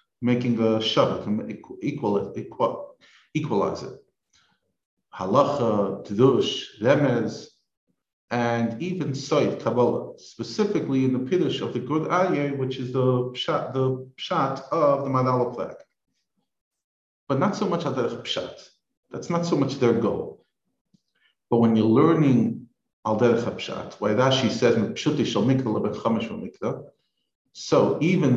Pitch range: 120-155 Hz